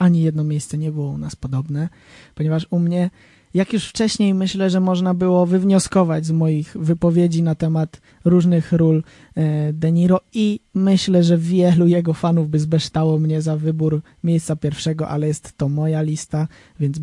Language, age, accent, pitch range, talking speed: Polish, 20-39, native, 155-190 Hz, 165 wpm